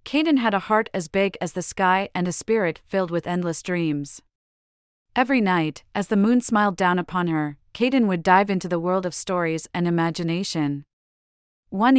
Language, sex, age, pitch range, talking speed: English, female, 30-49, 165-210 Hz, 180 wpm